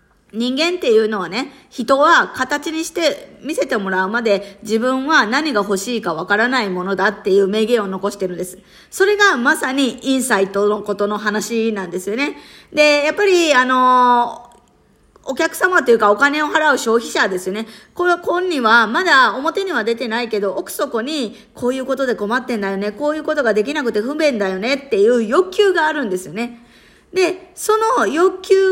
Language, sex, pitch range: Japanese, female, 205-315 Hz